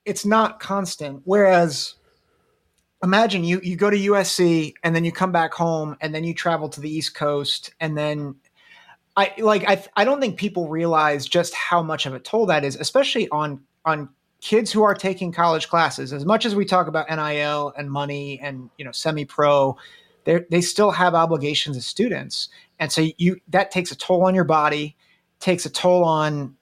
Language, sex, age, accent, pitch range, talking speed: English, male, 30-49, American, 150-190 Hz, 190 wpm